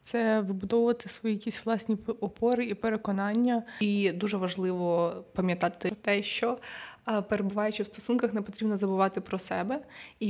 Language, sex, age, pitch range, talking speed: Ukrainian, female, 20-39, 190-220 Hz, 135 wpm